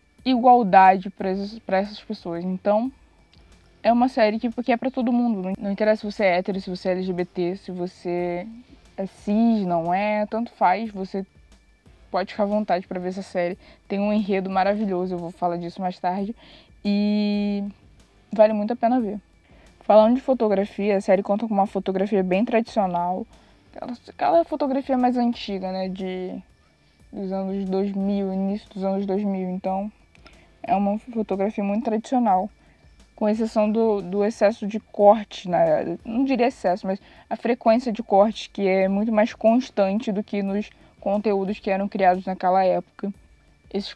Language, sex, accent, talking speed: Portuguese, female, Brazilian, 160 wpm